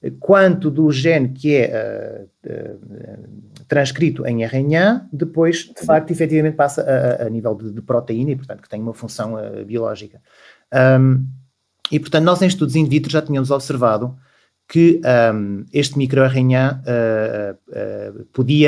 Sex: male